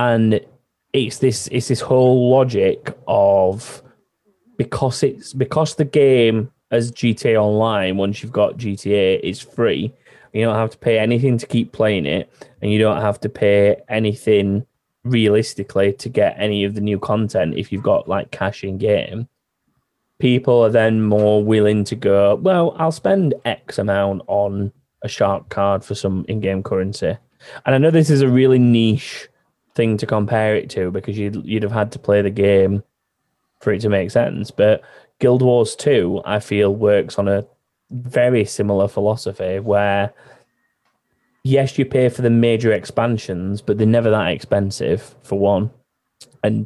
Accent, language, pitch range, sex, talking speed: British, English, 100-125 Hz, male, 165 wpm